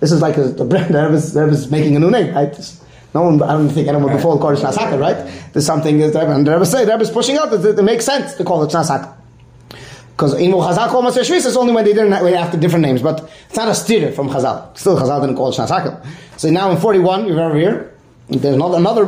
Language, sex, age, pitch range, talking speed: English, male, 30-49, 145-205 Hz, 250 wpm